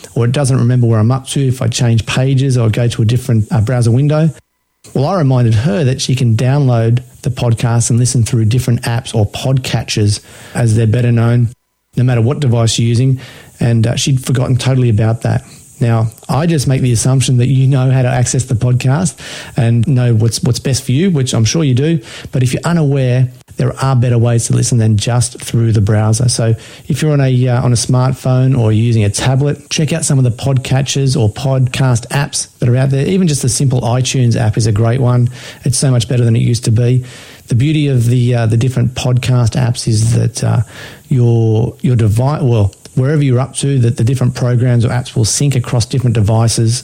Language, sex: English, male